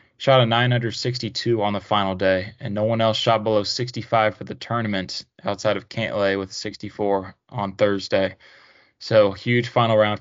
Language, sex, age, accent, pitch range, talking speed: English, male, 20-39, American, 105-120 Hz, 165 wpm